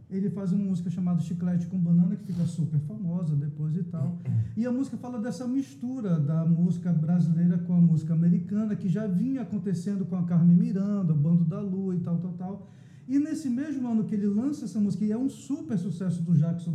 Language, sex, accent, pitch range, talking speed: Portuguese, male, Brazilian, 165-210 Hz, 215 wpm